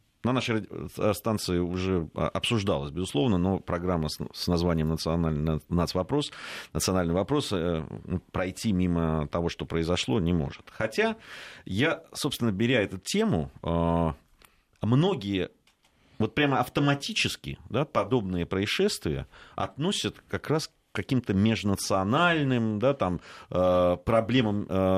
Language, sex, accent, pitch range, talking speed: Russian, male, native, 90-130 Hz, 95 wpm